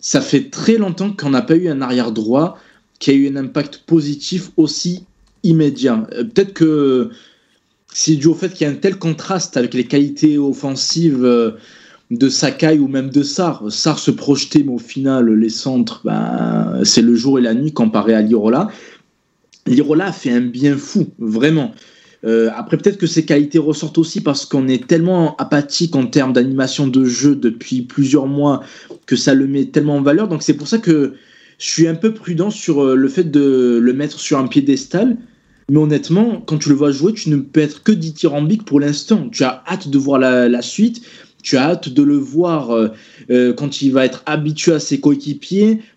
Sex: male